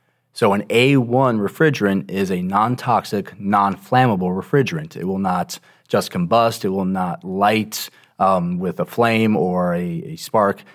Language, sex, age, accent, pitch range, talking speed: English, male, 30-49, American, 100-145 Hz, 145 wpm